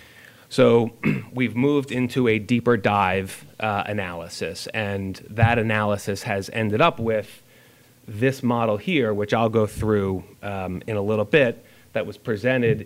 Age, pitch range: 30-49, 100-120 Hz